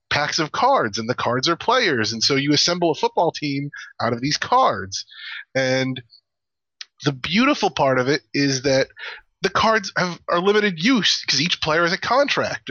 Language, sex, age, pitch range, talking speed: English, male, 30-49, 135-175 Hz, 180 wpm